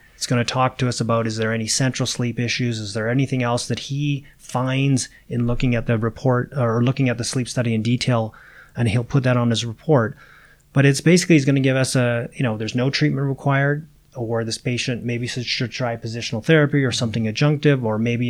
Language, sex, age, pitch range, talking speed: English, male, 30-49, 120-135 Hz, 225 wpm